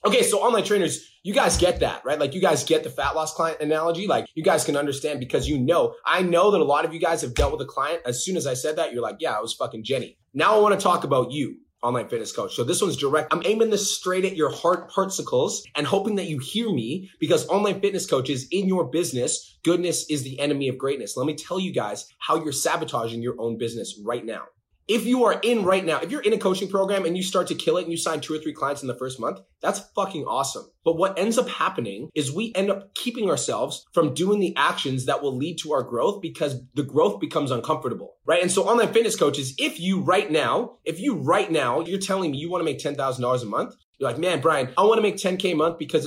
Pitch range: 145-190 Hz